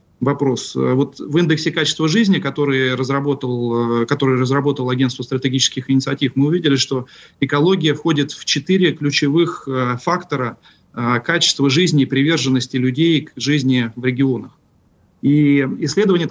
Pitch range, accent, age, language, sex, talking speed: 130-155 Hz, native, 40-59, Russian, male, 120 wpm